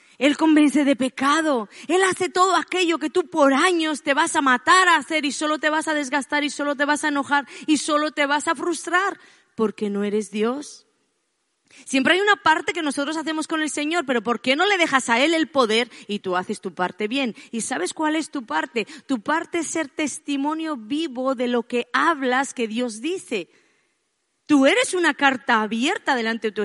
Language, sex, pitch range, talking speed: Spanish, female, 235-315 Hz, 210 wpm